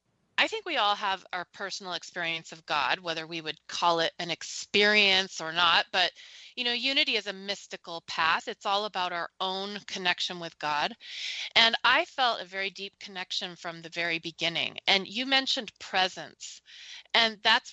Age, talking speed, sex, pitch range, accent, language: 30-49, 175 wpm, female, 175-220 Hz, American, English